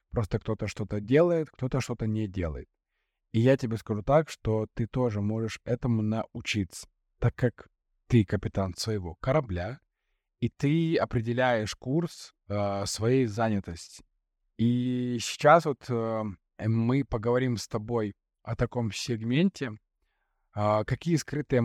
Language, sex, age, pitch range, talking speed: Russian, male, 20-39, 95-125 Hz, 115 wpm